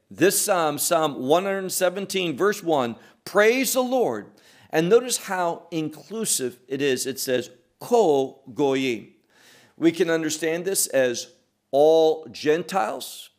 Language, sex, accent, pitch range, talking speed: English, male, American, 135-195 Hz, 115 wpm